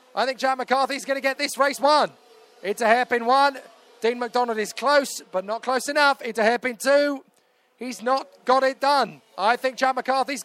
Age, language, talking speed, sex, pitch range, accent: 20-39, English, 200 wpm, male, 220-260 Hz, British